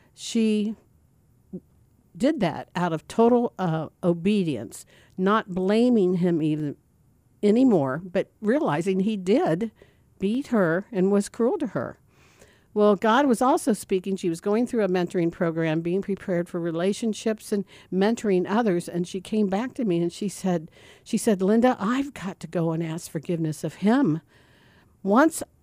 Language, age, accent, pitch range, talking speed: English, 60-79, American, 170-215 Hz, 150 wpm